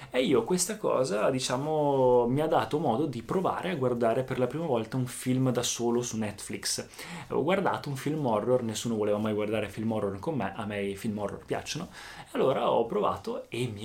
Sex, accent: male, native